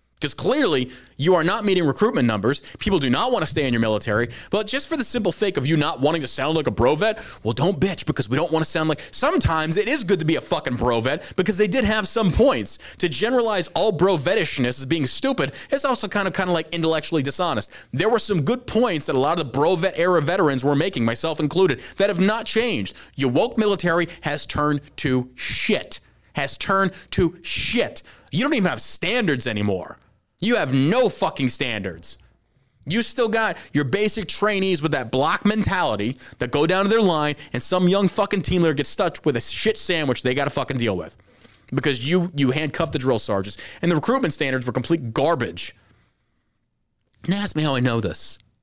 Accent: American